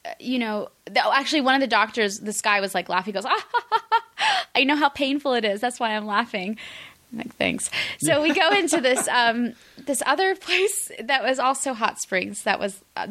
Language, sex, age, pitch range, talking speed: English, female, 20-39, 185-240 Hz, 215 wpm